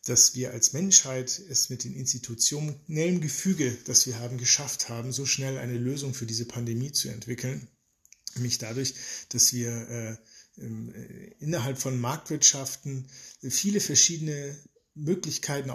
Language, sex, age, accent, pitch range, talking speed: German, male, 40-59, German, 120-135 Hz, 130 wpm